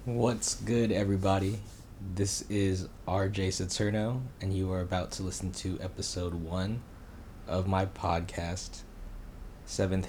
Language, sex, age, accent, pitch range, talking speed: English, male, 20-39, American, 85-95 Hz, 120 wpm